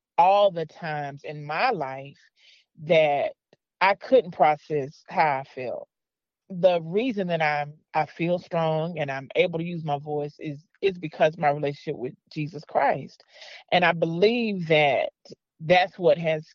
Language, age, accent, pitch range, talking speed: English, 40-59, American, 155-190 Hz, 155 wpm